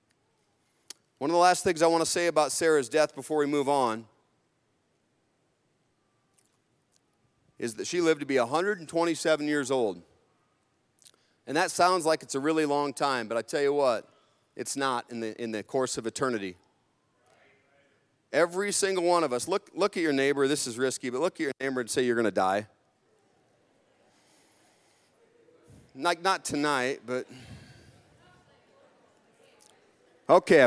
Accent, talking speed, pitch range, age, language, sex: American, 150 wpm, 130-175 Hz, 40-59, English, male